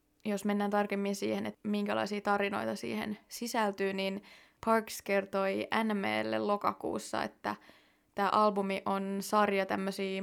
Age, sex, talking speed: 20-39, female, 115 wpm